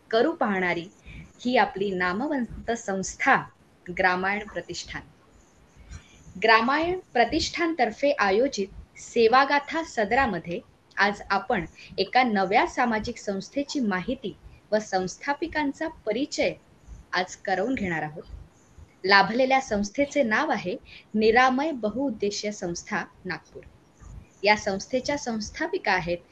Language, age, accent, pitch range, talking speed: Marathi, 20-39, native, 195-275 Hz, 55 wpm